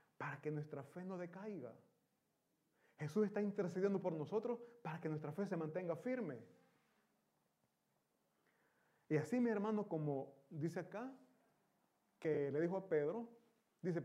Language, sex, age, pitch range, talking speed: Italian, male, 30-49, 145-215 Hz, 130 wpm